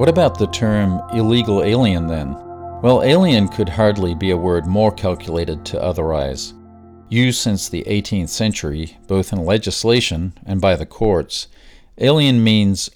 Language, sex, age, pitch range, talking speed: English, male, 50-69, 90-115 Hz, 150 wpm